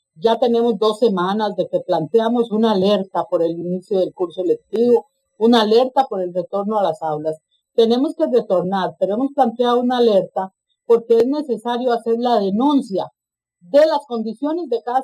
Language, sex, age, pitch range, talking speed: English, female, 40-59, 215-285 Hz, 170 wpm